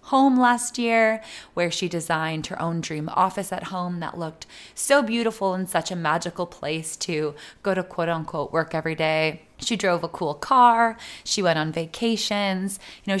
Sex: female